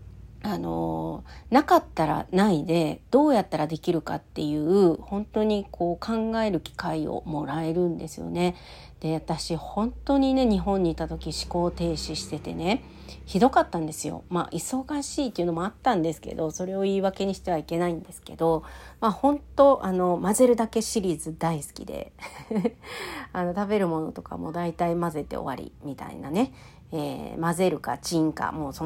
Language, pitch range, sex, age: Japanese, 160-220 Hz, female, 40-59